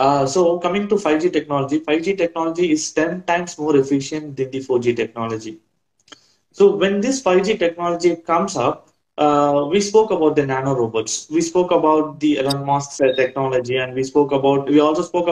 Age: 20-39